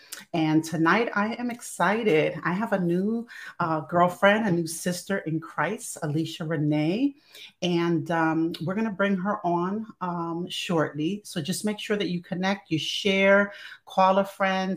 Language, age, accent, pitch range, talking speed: English, 40-59, American, 155-190 Hz, 165 wpm